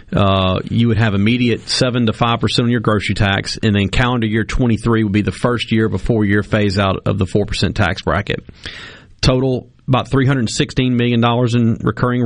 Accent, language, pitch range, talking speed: American, English, 100-120 Hz, 175 wpm